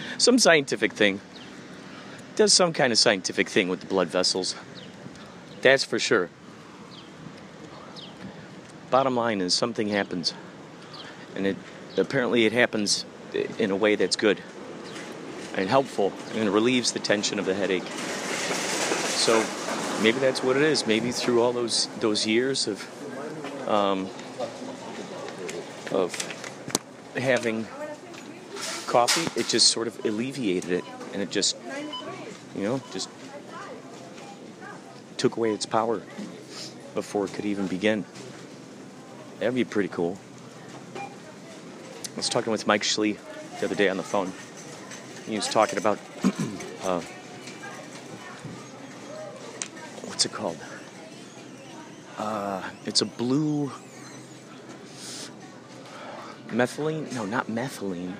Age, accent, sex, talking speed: 40-59, American, male, 120 wpm